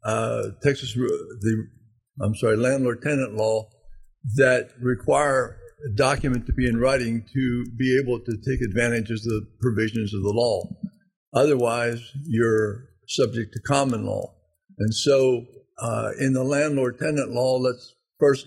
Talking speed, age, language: 135 wpm, 50-69, English